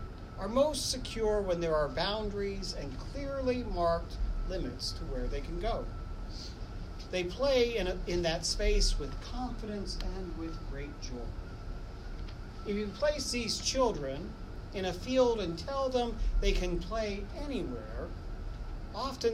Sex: male